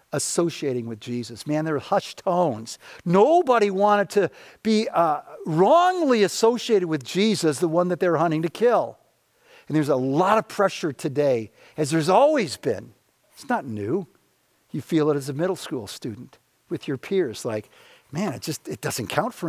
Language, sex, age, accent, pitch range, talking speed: English, male, 50-69, American, 145-210 Hz, 175 wpm